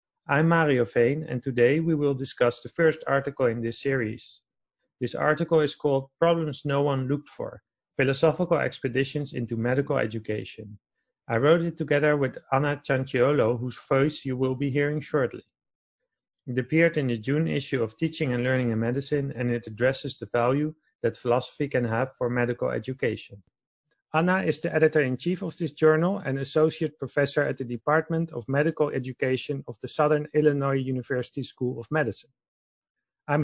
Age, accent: 40-59, Dutch